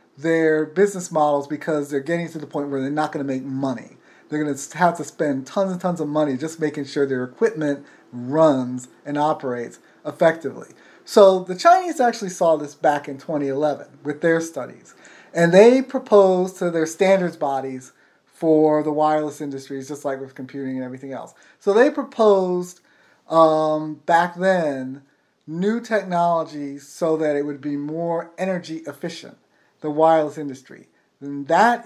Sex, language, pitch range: male, English, 145-175 Hz